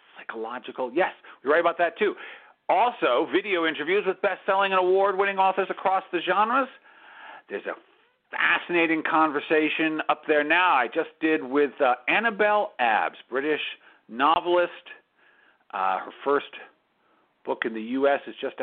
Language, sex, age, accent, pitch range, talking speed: English, male, 50-69, American, 150-190 Hz, 140 wpm